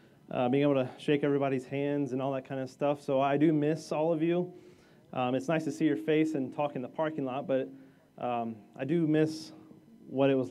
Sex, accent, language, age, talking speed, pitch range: male, American, English, 30-49, 235 wpm, 140-165 Hz